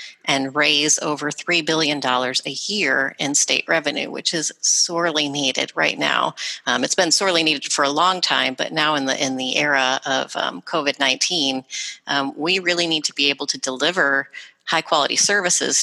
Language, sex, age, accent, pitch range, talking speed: English, female, 30-49, American, 135-170 Hz, 185 wpm